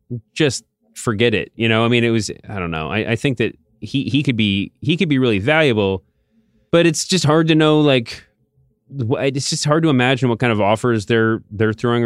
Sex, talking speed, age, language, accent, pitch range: male, 220 wpm, 30-49, English, American, 105-125 Hz